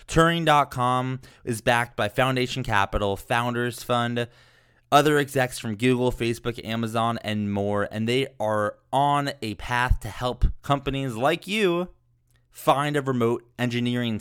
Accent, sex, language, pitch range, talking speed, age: American, male, English, 105-130 Hz, 130 wpm, 20-39